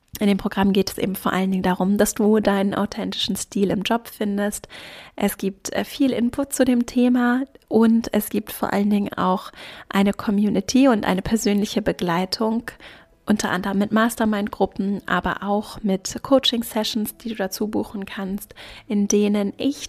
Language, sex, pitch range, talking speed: German, female, 195-220 Hz, 165 wpm